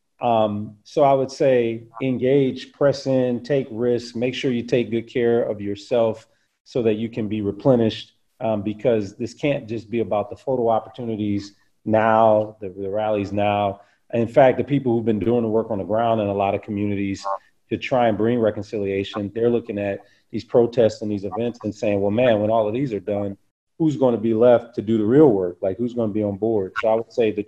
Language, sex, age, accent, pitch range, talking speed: English, male, 40-59, American, 100-120 Hz, 215 wpm